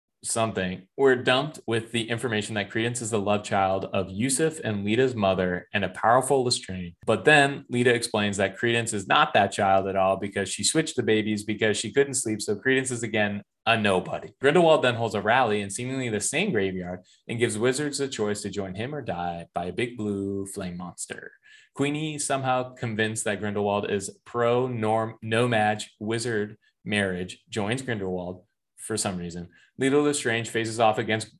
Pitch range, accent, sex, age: 95-120 Hz, American, male, 20-39